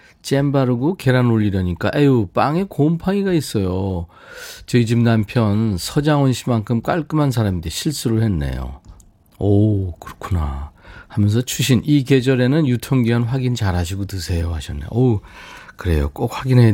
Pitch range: 95-140 Hz